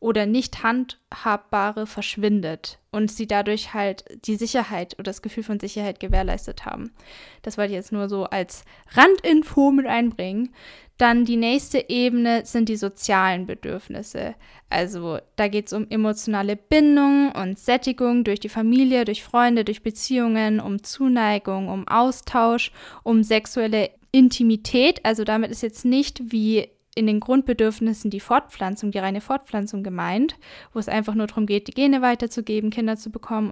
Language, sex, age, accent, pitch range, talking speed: German, female, 10-29, German, 205-240 Hz, 150 wpm